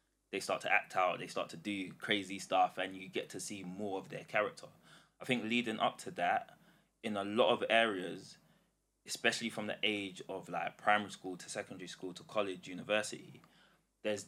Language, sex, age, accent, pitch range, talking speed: English, male, 20-39, British, 90-105 Hz, 195 wpm